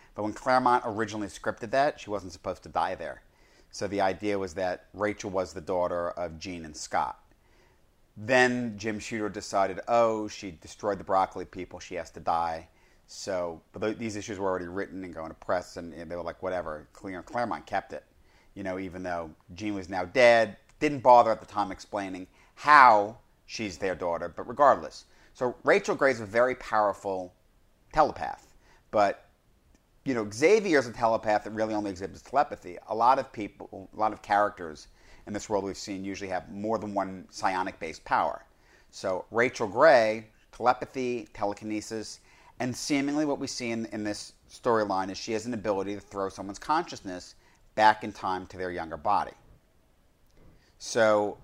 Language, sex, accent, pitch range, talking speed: English, male, American, 95-120 Hz, 170 wpm